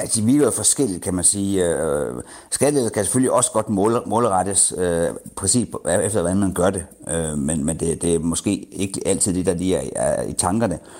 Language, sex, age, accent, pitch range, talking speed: Danish, male, 60-79, native, 85-105 Hz, 160 wpm